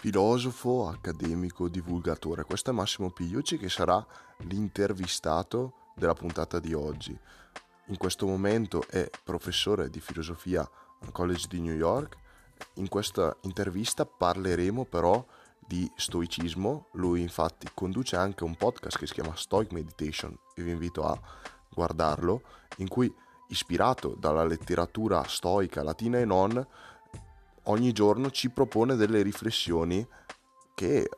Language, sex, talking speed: Italian, male, 125 wpm